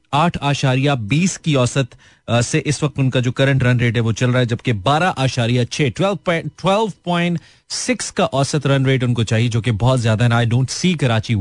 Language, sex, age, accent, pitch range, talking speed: Hindi, male, 30-49, native, 110-140 Hz, 195 wpm